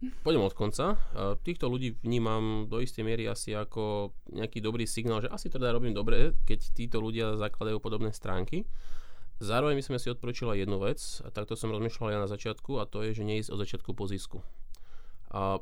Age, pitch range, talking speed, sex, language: 20-39, 100-120 Hz, 190 wpm, male, Slovak